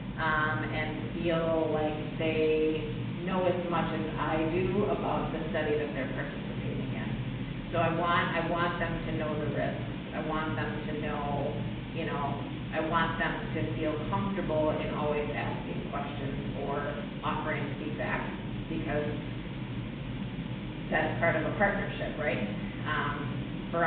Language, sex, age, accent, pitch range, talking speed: English, female, 40-59, American, 155-170 Hz, 145 wpm